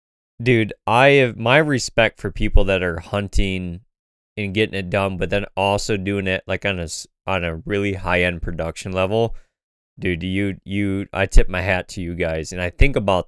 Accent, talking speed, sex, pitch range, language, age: American, 195 wpm, male, 95-115 Hz, English, 20-39